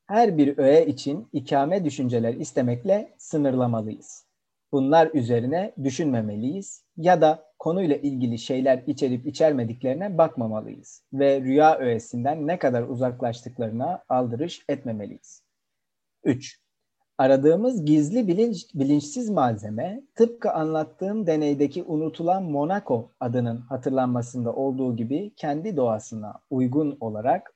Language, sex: Turkish, male